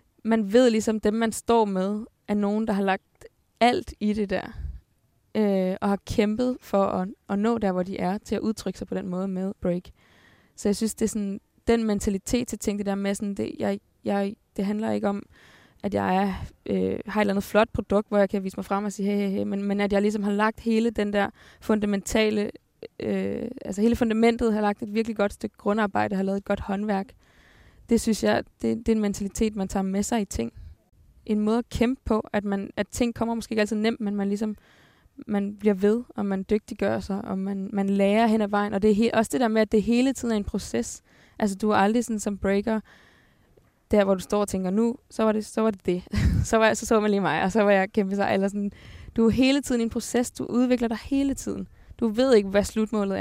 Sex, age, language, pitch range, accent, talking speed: female, 20-39, Danish, 200-225 Hz, native, 245 wpm